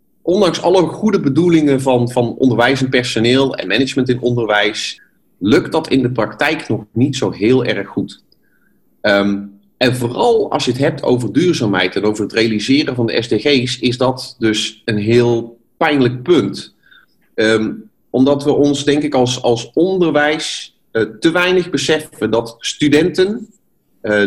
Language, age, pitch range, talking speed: Dutch, 30-49, 110-140 Hz, 150 wpm